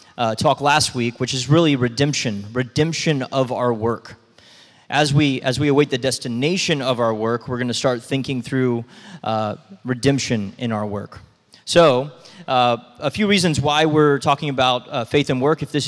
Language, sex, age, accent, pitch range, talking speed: English, male, 20-39, American, 120-150 Hz, 180 wpm